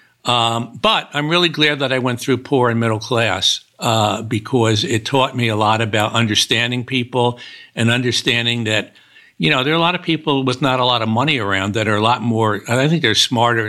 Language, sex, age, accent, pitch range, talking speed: English, male, 60-79, American, 115-145 Hz, 220 wpm